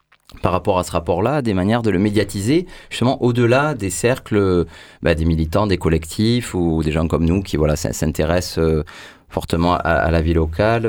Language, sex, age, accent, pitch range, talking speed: French, male, 30-49, French, 85-105 Hz, 195 wpm